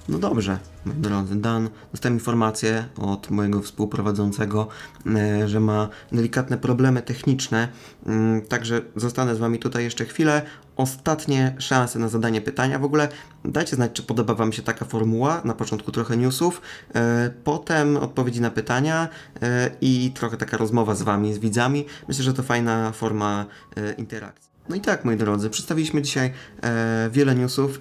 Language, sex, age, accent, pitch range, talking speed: Polish, male, 20-39, native, 110-130 Hz, 145 wpm